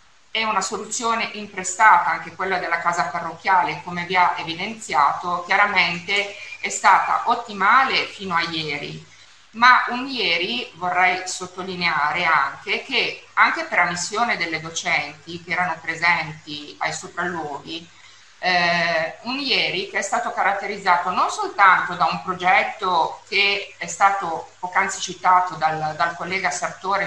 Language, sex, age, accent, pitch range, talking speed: Italian, female, 50-69, native, 170-200 Hz, 130 wpm